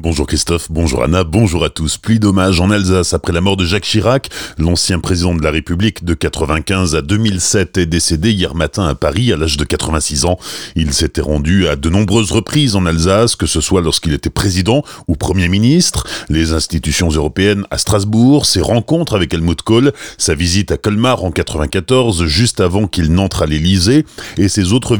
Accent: French